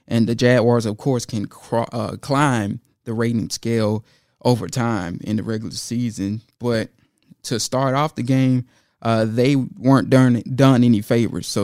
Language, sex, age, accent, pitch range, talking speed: English, male, 20-39, American, 115-135 Hz, 155 wpm